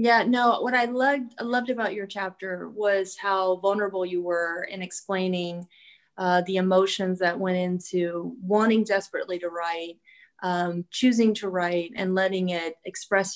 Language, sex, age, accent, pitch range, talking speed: English, female, 30-49, American, 185-225 Hz, 155 wpm